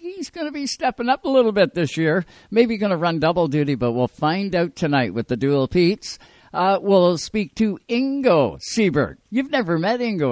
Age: 60-79